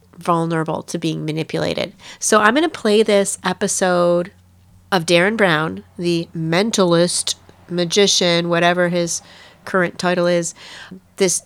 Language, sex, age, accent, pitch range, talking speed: English, female, 30-49, American, 150-195 Hz, 120 wpm